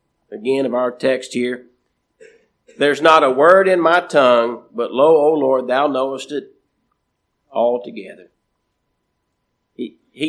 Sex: male